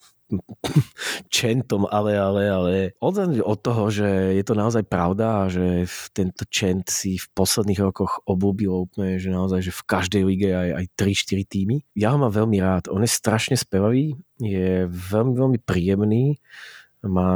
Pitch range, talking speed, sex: 90-105 Hz, 160 wpm, male